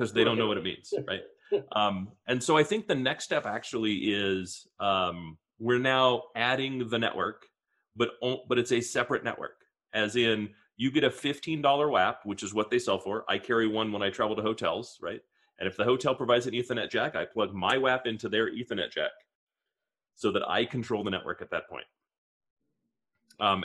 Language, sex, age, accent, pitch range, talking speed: English, male, 30-49, American, 105-135 Hz, 200 wpm